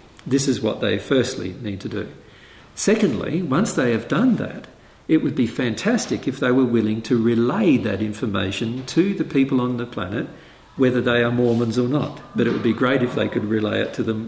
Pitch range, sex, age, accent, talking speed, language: 115-145 Hz, male, 50-69, Australian, 210 wpm, English